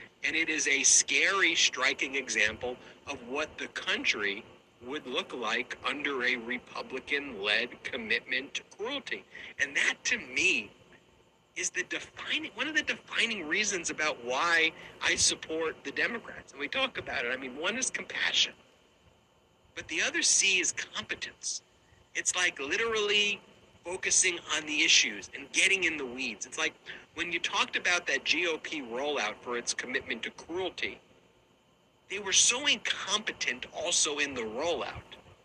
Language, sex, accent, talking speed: English, male, American, 150 wpm